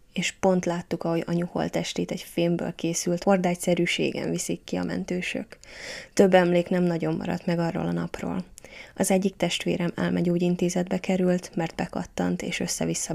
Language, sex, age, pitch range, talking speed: Hungarian, female, 20-39, 170-190 Hz, 150 wpm